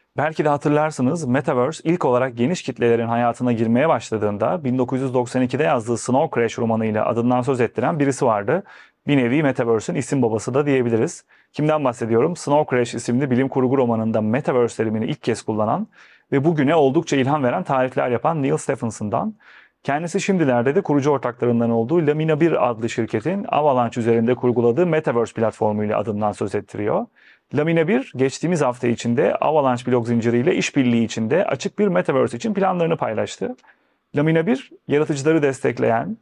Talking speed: 150 wpm